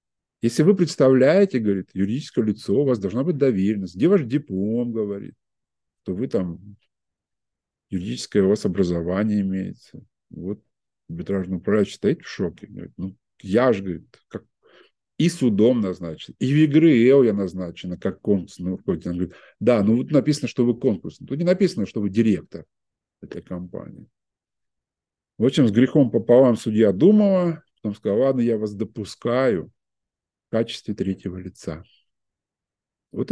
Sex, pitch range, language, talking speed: male, 100-150 Hz, Russian, 145 wpm